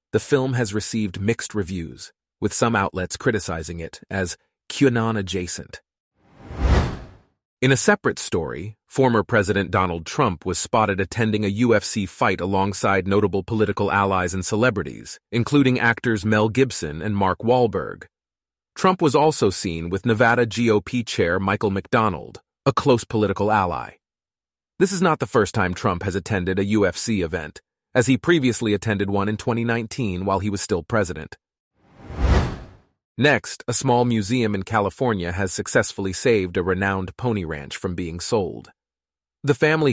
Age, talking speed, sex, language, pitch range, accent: 30-49, 145 wpm, male, English, 95-120 Hz, American